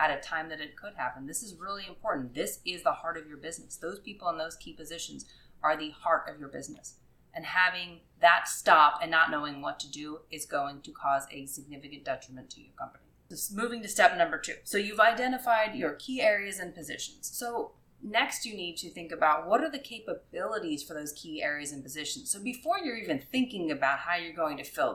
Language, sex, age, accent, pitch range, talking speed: English, female, 30-49, American, 145-185 Hz, 220 wpm